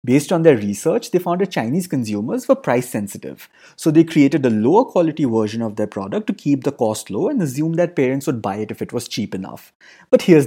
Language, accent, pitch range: English, Indian, 115-175 Hz